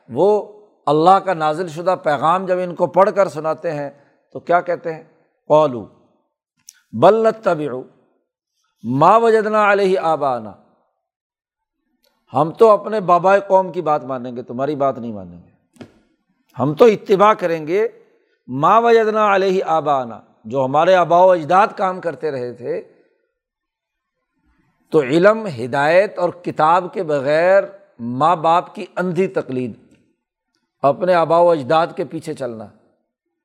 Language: Urdu